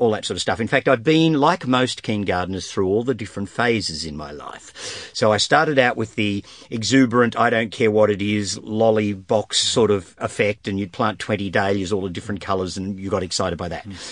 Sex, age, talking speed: male, 50-69, 230 wpm